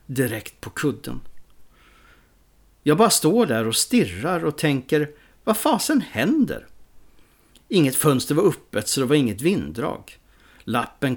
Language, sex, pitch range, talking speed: English, male, 125-175 Hz, 130 wpm